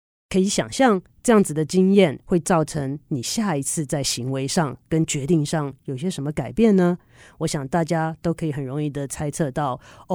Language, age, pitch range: Chinese, 30-49, 150-195 Hz